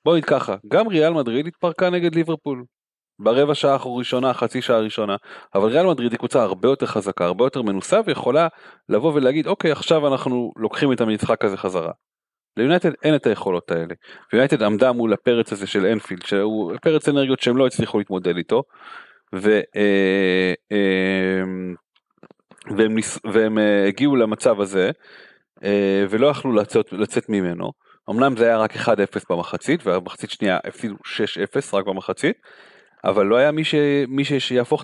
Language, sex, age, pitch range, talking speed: Hebrew, male, 30-49, 100-135 Hz, 145 wpm